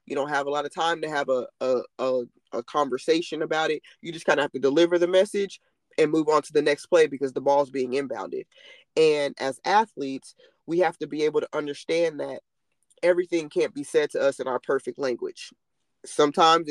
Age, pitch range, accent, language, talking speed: 20-39, 150-210 Hz, American, English, 210 wpm